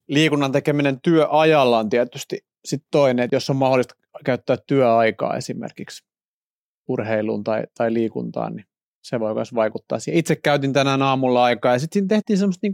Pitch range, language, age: 120-150 Hz, Finnish, 30-49